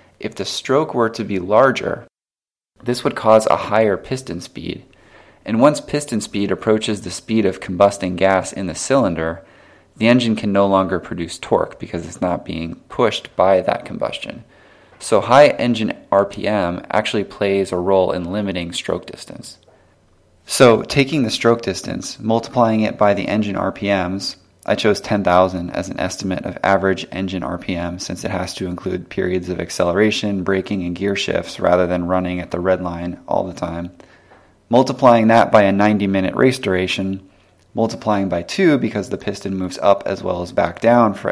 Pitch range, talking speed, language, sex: 90-110 Hz, 170 wpm, English, male